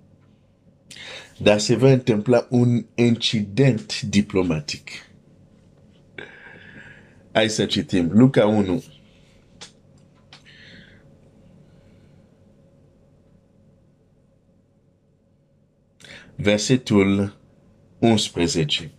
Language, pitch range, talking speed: Romanian, 95-120 Hz, 45 wpm